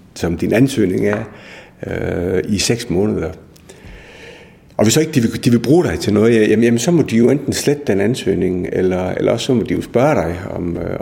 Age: 60-79